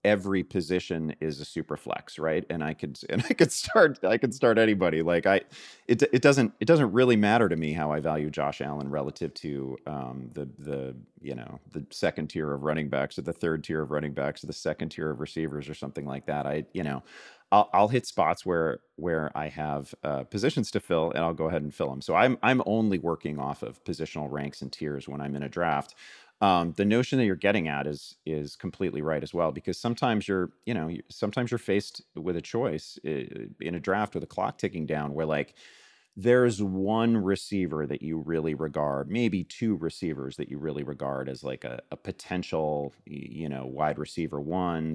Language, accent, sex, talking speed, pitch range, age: English, American, male, 215 wpm, 70-90 Hz, 40-59